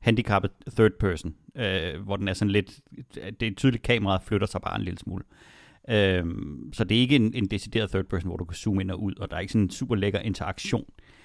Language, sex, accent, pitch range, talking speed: Danish, male, native, 95-125 Hz, 240 wpm